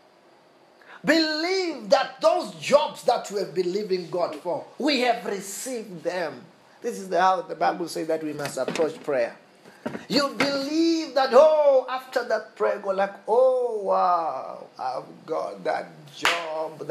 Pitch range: 170-230 Hz